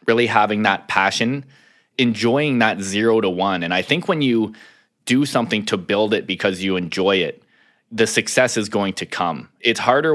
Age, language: 20-39, English